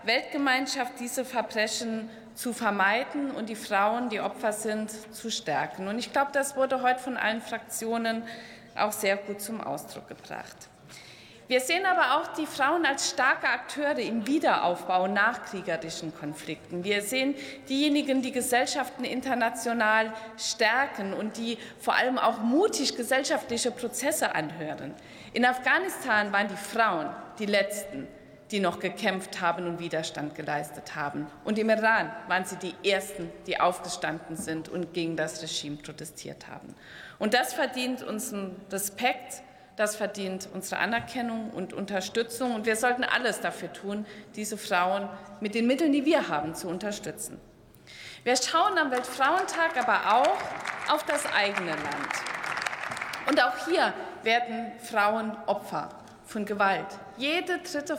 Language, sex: German, female